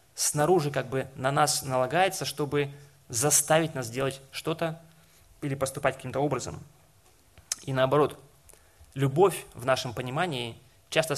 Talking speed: 120 wpm